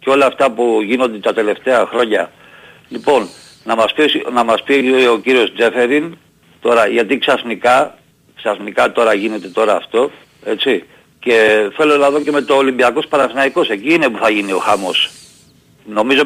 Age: 50-69